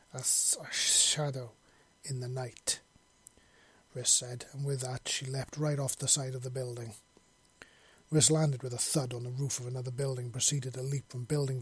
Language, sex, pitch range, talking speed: English, male, 125-145 Hz, 185 wpm